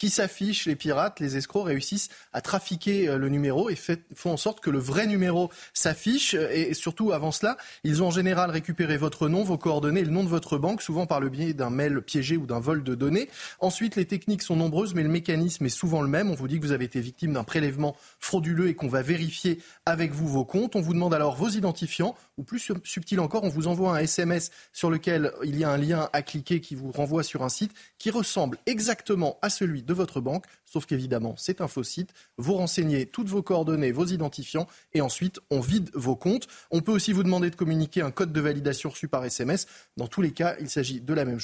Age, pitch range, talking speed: 20-39, 150-185 Hz, 235 wpm